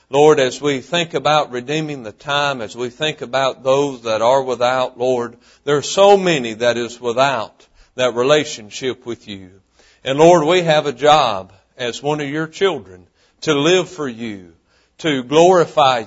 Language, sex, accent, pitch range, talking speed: English, male, American, 130-190 Hz, 170 wpm